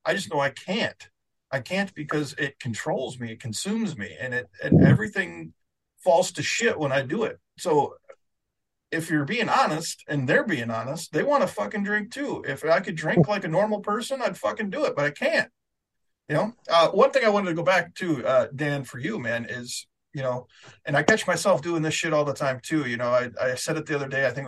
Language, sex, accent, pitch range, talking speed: English, male, American, 135-180 Hz, 235 wpm